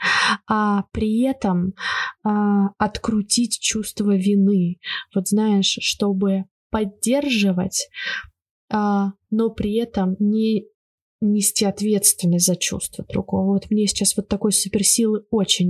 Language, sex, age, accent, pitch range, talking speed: Russian, female, 20-39, native, 195-230 Hz, 105 wpm